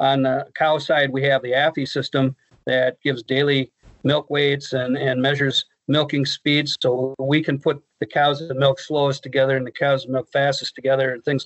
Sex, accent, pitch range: male, American, 130-150 Hz